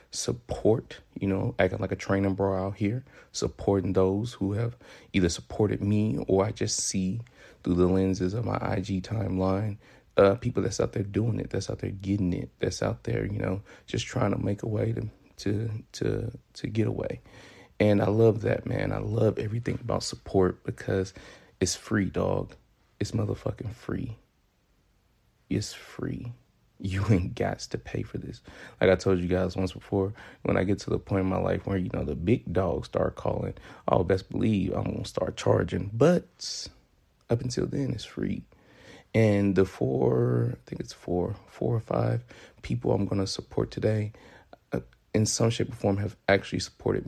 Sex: male